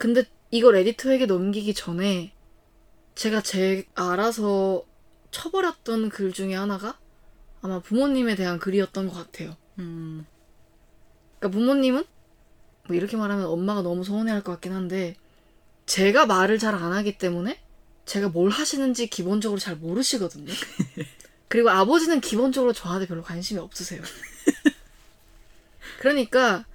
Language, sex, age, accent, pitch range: Korean, female, 20-39, native, 185-255 Hz